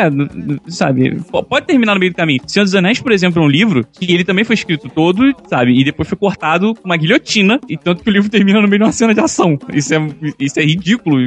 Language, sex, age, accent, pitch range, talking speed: Portuguese, male, 20-39, Brazilian, 145-195 Hz, 250 wpm